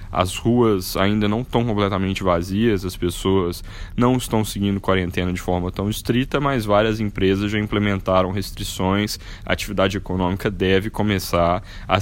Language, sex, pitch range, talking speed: Portuguese, male, 95-110 Hz, 145 wpm